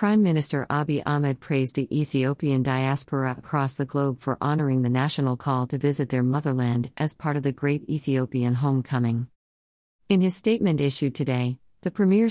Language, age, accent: English, 50-69, American